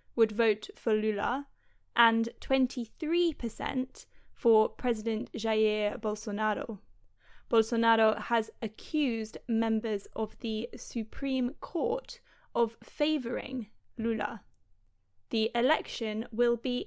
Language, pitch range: English, 225-265 Hz